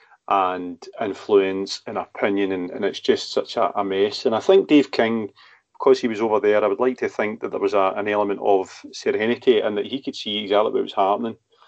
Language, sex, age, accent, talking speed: English, male, 40-59, British, 220 wpm